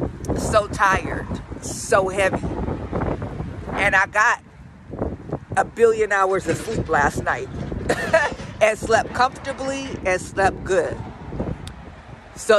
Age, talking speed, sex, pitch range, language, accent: 50-69, 100 wpm, female, 170-210 Hz, English, American